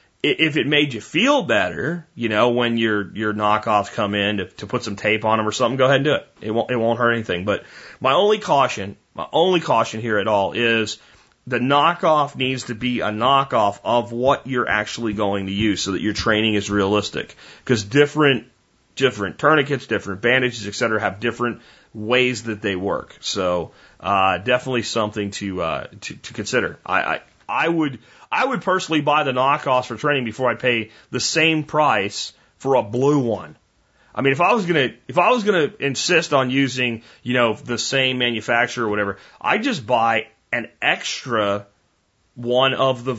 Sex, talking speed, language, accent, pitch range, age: male, 190 wpm, English, American, 110-140 Hz, 30-49